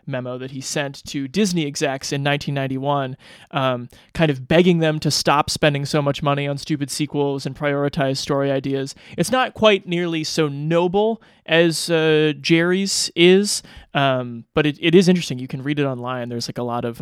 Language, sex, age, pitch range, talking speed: English, male, 30-49, 130-165 Hz, 185 wpm